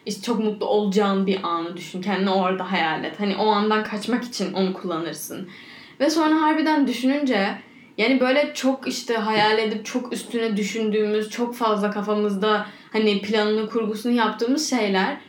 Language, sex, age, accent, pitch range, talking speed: Turkish, female, 10-29, native, 205-260 Hz, 150 wpm